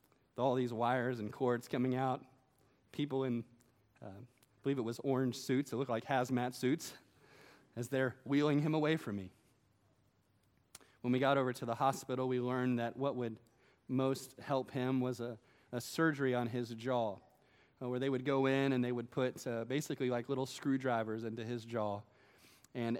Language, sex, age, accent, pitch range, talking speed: English, male, 30-49, American, 115-130 Hz, 185 wpm